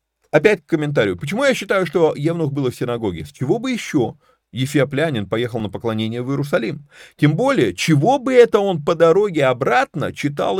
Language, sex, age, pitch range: Russian, male, 30-49, 110-170 Hz